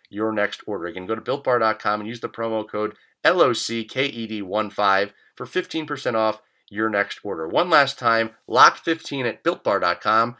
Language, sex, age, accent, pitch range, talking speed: English, male, 30-49, American, 105-135 Hz, 145 wpm